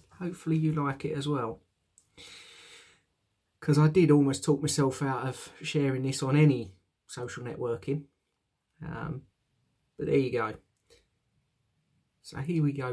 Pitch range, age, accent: 125-165 Hz, 40-59, British